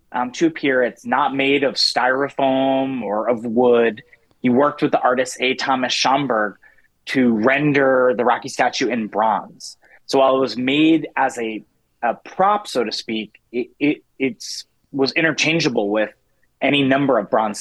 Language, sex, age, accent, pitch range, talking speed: English, male, 30-49, American, 120-160 Hz, 165 wpm